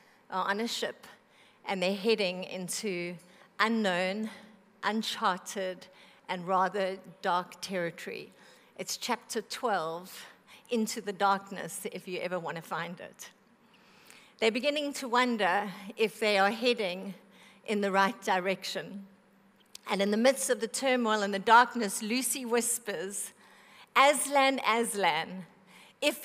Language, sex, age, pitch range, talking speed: English, female, 50-69, 200-255 Hz, 120 wpm